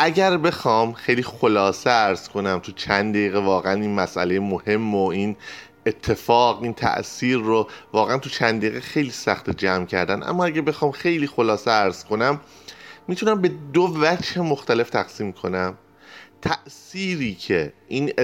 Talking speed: 145 wpm